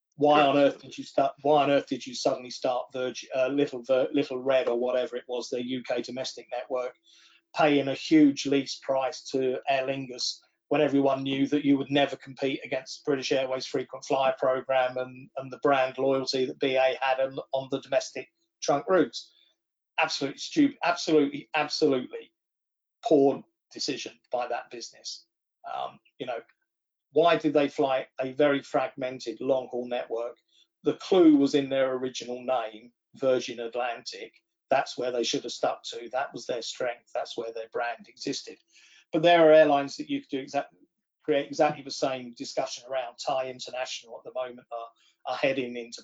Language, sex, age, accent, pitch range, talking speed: English, male, 40-59, British, 130-155 Hz, 170 wpm